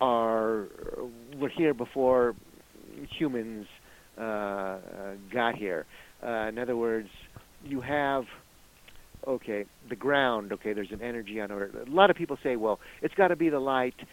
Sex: male